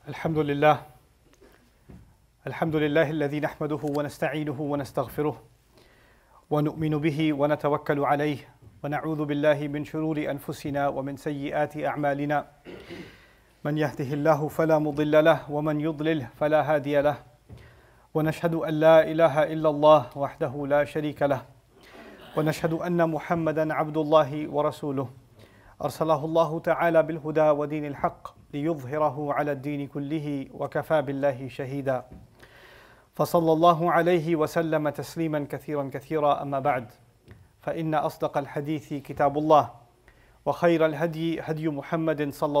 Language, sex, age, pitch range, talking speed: English, male, 40-59, 140-155 Hz, 110 wpm